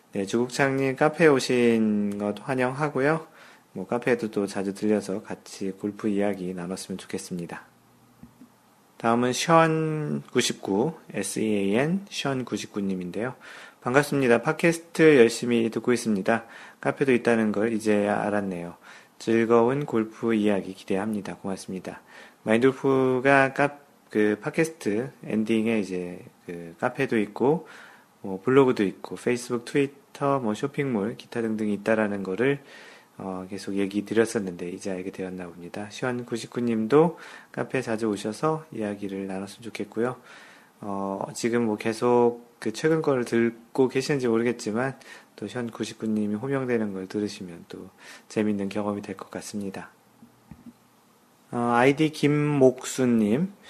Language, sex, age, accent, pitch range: Korean, male, 40-59, native, 105-130 Hz